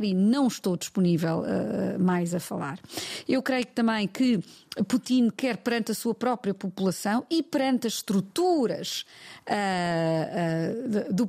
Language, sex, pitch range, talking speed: Portuguese, female, 185-240 Hz, 120 wpm